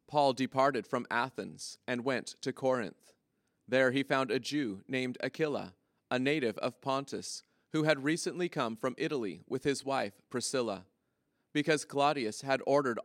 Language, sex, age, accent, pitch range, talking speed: English, male, 30-49, American, 125-150 Hz, 150 wpm